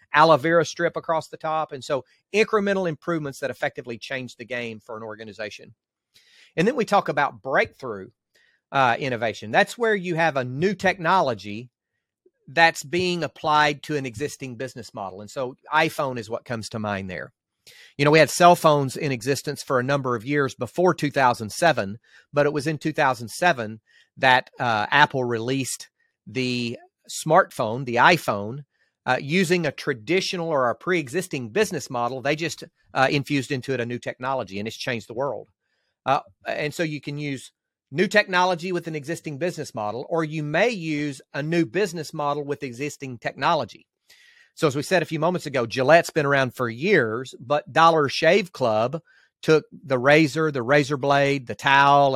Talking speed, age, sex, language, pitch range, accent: 175 wpm, 40-59, male, English, 125-165 Hz, American